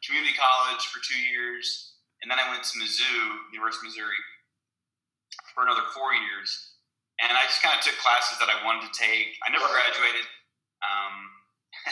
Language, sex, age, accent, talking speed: English, male, 30-49, American, 170 wpm